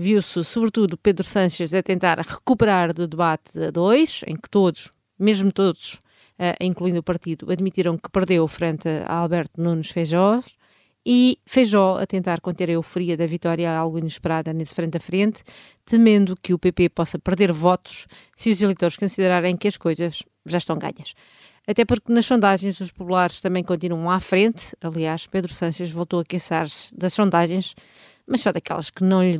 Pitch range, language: 170-200 Hz, Portuguese